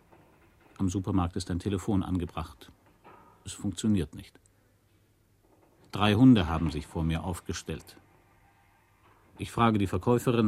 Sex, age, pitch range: male, 50-69, 90-110 Hz